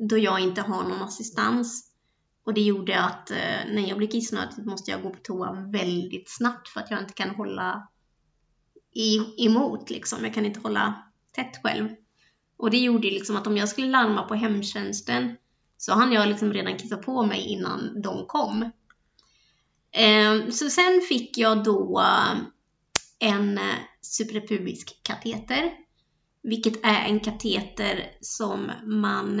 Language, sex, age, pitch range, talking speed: Swedish, female, 20-39, 205-235 Hz, 155 wpm